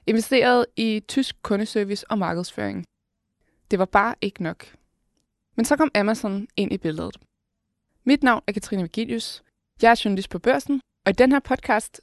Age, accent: 20-39, native